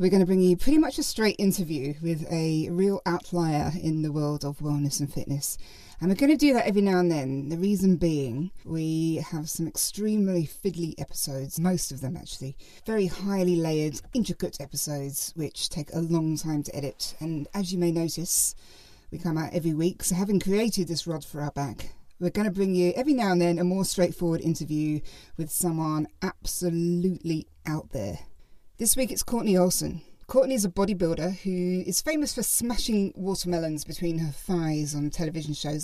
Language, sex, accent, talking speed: English, female, British, 190 wpm